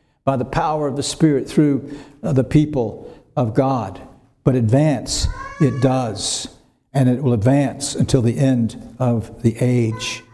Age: 60-79